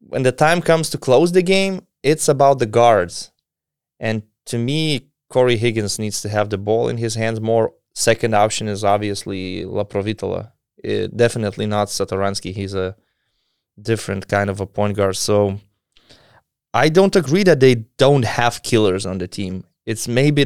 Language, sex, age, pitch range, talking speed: English, male, 20-39, 105-135 Hz, 165 wpm